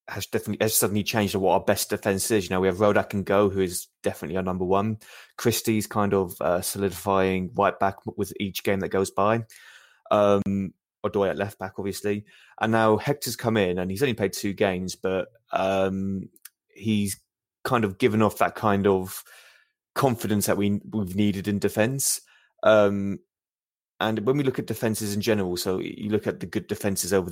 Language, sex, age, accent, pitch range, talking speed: English, male, 20-39, British, 95-105 Hz, 195 wpm